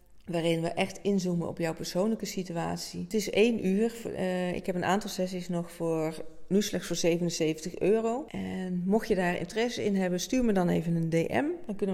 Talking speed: 195 wpm